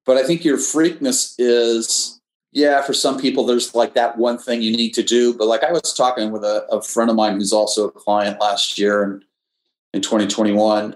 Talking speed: 215 wpm